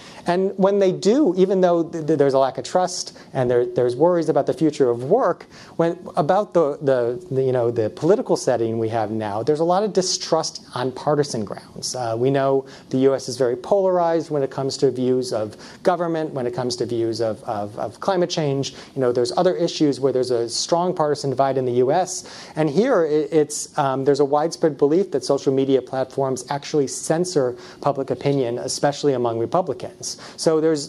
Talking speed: 200 wpm